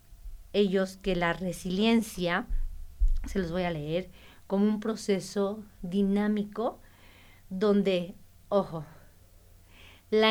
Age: 40-59